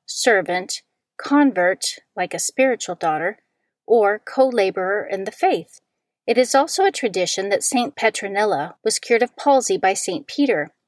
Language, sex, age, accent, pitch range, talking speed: English, female, 40-59, American, 195-270 Hz, 145 wpm